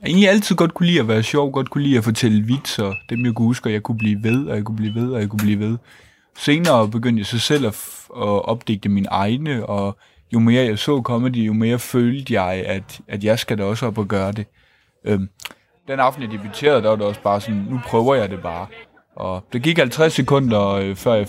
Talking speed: 250 wpm